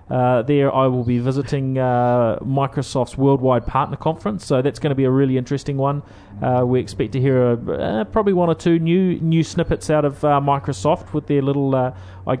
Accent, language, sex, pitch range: Australian, English, male, 120-140 Hz